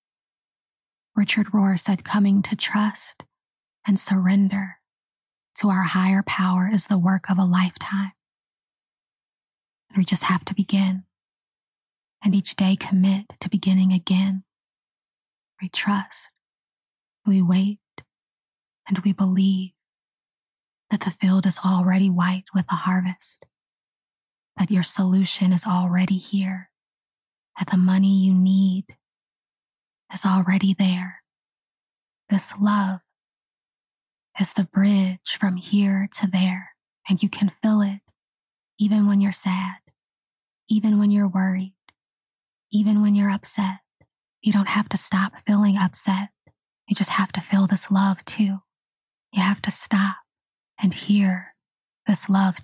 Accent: American